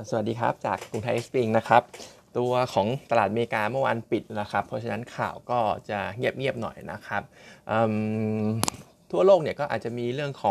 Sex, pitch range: male, 110-130 Hz